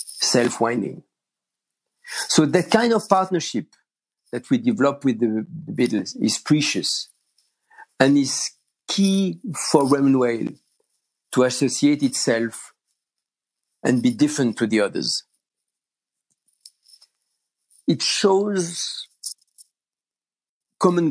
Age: 50-69